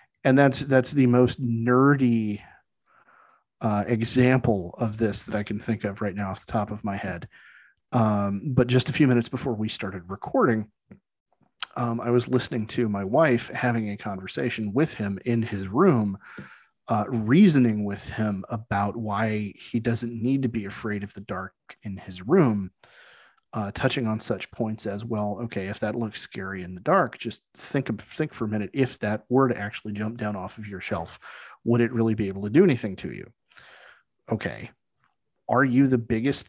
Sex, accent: male, American